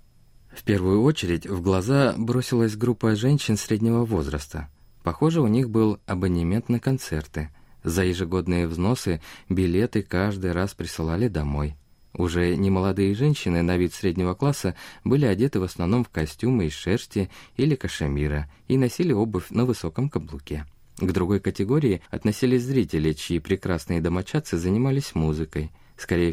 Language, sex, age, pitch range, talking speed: Russian, male, 20-39, 80-115 Hz, 135 wpm